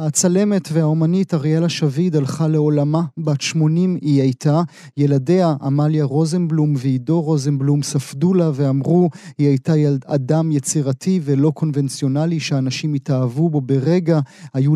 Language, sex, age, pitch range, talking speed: Hebrew, male, 30-49, 140-170 Hz, 120 wpm